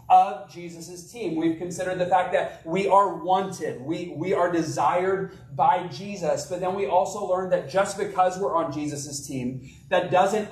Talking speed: 175 wpm